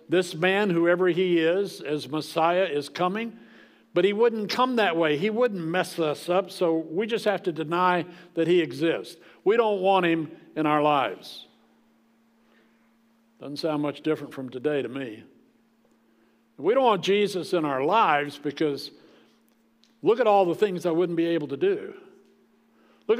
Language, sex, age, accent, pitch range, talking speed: English, male, 60-79, American, 140-190 Hz, 165 wpm